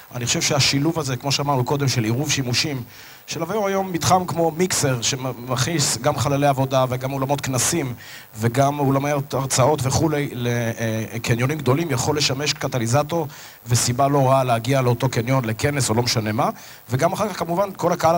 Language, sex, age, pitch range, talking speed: Hebrew, male, 30-49, 130-160 Hz, 160 wpm